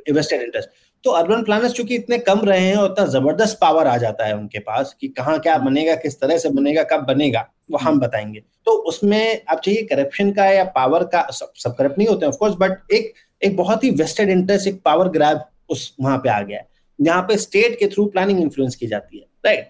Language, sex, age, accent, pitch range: Hindi, male, 30-49, native, 145-230 Hz